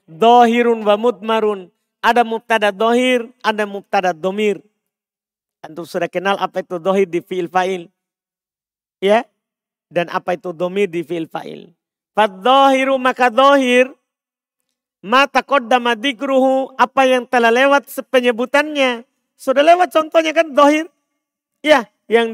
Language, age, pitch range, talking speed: Indonesian, 40-59, 175-245 Hz, 115 wpm